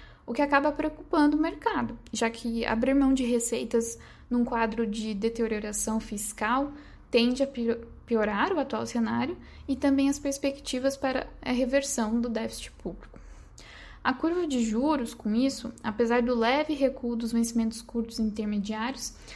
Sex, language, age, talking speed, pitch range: female, Portuguese, 10-29, 150 wpm, 230-275 Hz